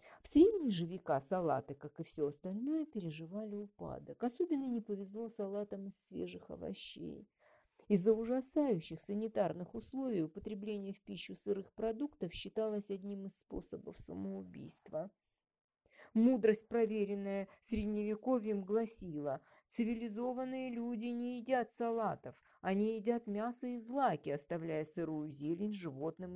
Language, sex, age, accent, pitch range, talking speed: Russian, female, 40-59, native, 155-220 Hz, 115 wpm